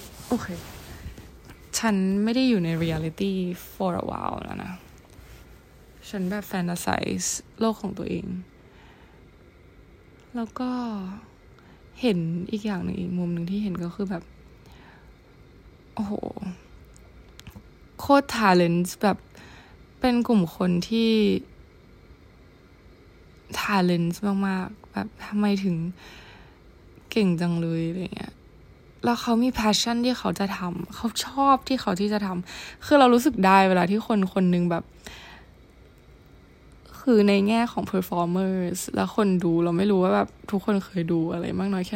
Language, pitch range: Thai, 175-225 Hz